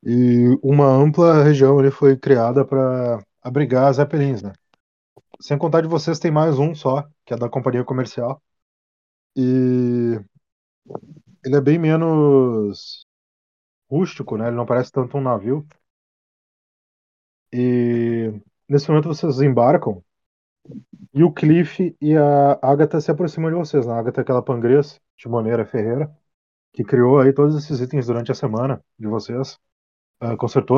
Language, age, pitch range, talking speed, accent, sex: Portuguese, 20-39, 120-145 Hz, 145 wpm, Brazilian, male